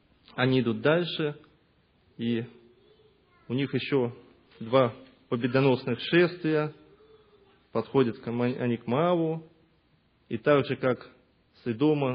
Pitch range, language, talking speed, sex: 115-140 Hz, Russian, 95 wpm, male